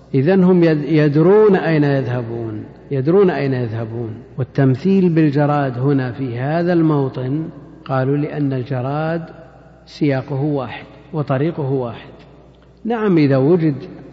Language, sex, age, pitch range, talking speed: Arabic, male, 50-69, 130-165 Hz, 95 wpm